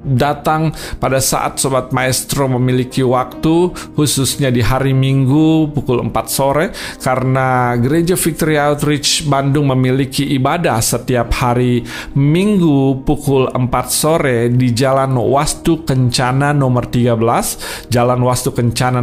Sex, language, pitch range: male, Indonesian, 120-140 Hz